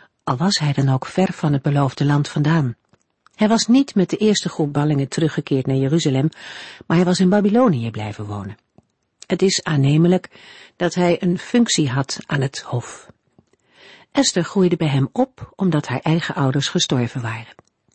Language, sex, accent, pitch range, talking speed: Dutch, female, Dutch, 135-190 Hz, 170 wpm